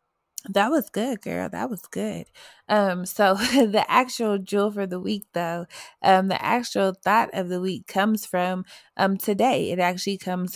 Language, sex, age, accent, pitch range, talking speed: English, female, 20-39, American, 175-205 Hz, 170 wpm